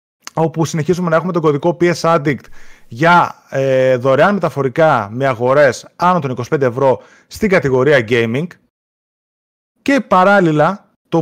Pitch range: 130-190 Hz